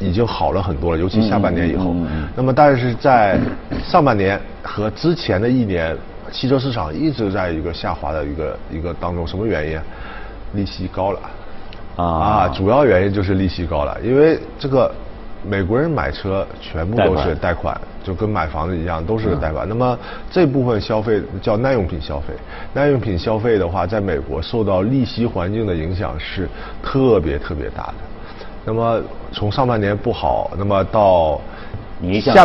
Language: Chinese